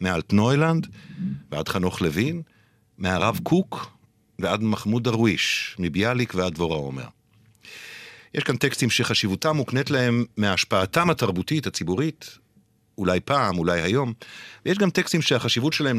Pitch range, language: 90-125 Hz, Hebrew